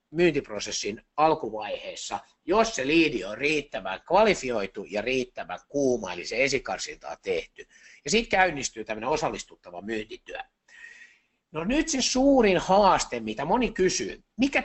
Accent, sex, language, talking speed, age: native, male, Finnish, 125 wpm, 60-79